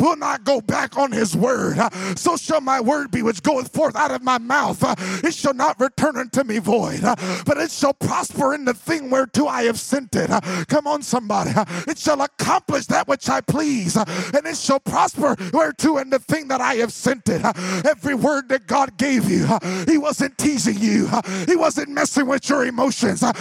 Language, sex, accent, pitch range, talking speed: English, male, American, 225-295 Hz, 195 wpm